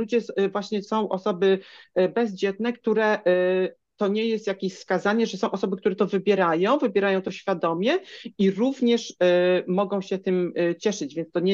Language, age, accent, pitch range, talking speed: Polish, 40-59, native, 175-215 Hz, 150 wpm